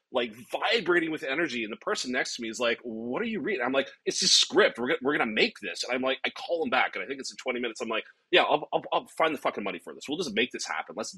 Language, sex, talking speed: English, male, 315 wpm